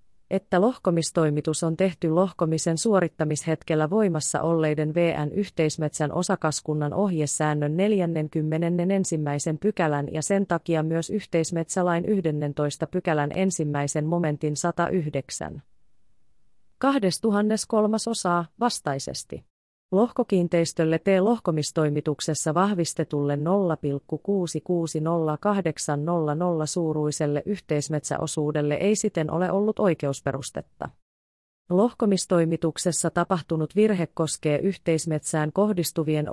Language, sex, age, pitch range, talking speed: Finnish, female, 30-49, 155-190 Hz, 70 wpm